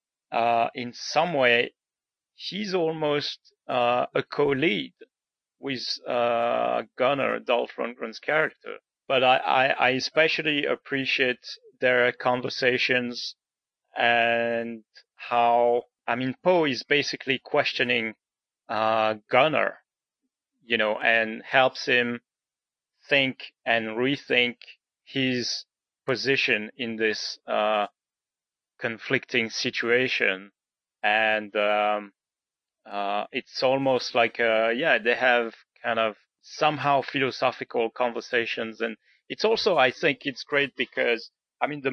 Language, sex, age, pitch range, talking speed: English, male, 40-59, 115-135 Hz, 105 wpm